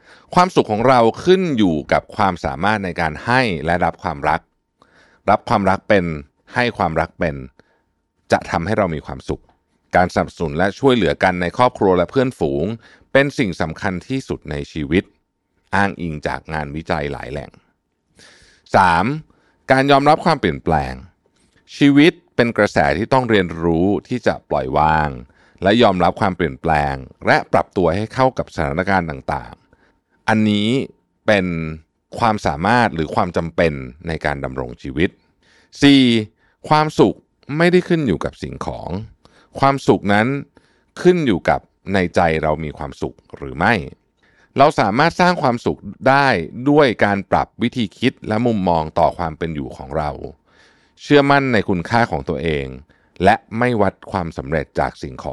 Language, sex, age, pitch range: Thai, male, 60-79, 80-120 Hz